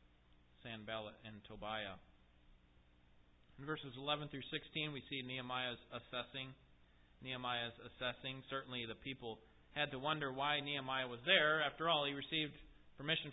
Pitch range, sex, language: 110-175 Hz, male, English